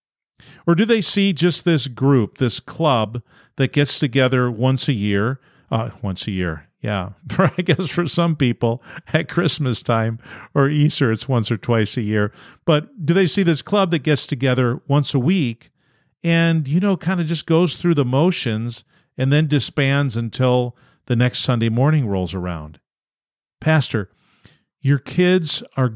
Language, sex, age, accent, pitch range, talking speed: English, male, 50-69, American, 110-155 Hz, 165 wpm